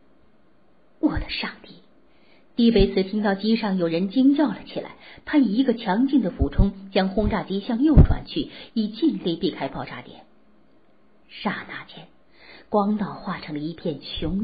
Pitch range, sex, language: 195-260 Hz, female, Chinese